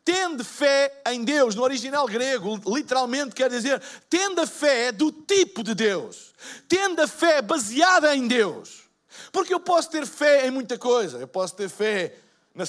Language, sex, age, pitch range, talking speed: Portuguese, male, 50-69, 225-300 Hz, 170 wpm